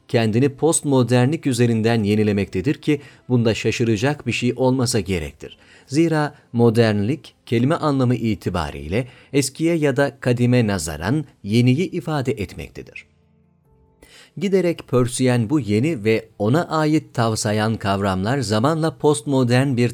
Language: Turkish